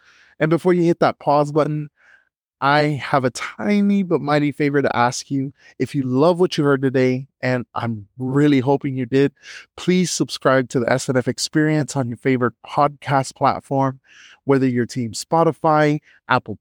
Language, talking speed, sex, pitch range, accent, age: English, 165 wpm, male, 125-150 Hz, American, 30-49